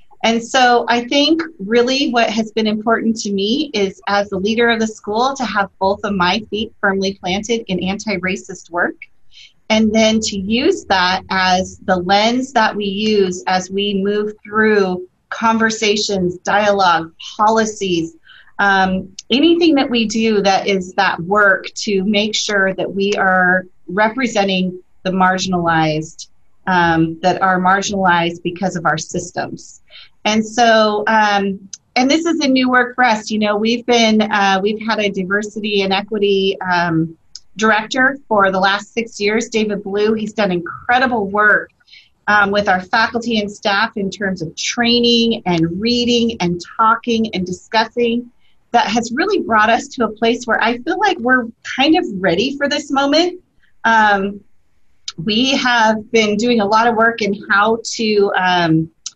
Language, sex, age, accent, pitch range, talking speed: English, female, 30-49, American, 190-230 Hz, 160 wpm